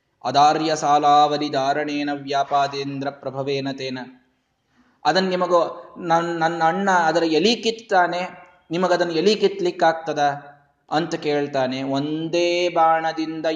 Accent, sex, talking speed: native, male, 75 wpm